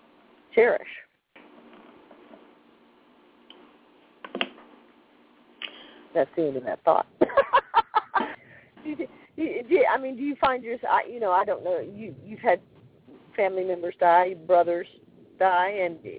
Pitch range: 155-185 Hz